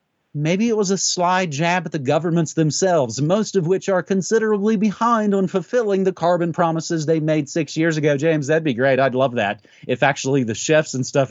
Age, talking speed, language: 40-59, 205 wpm, English